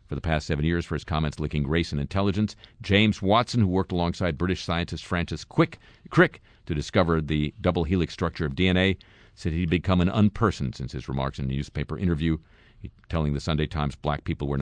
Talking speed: 195 wpm